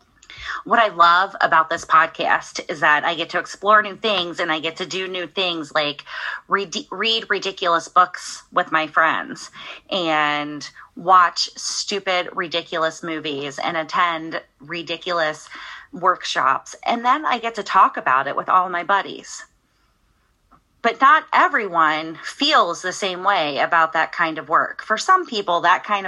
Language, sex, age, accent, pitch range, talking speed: English, female, 30-49, American, 165-215 Hz, 155 wpm